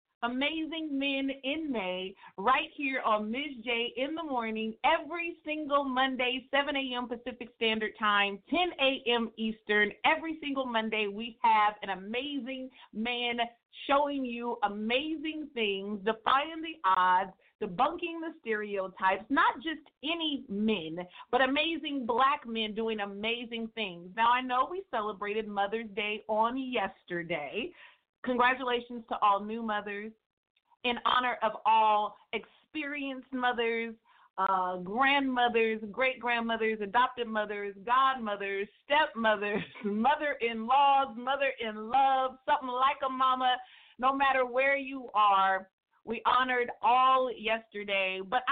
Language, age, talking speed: English, 40-59, 115 wpm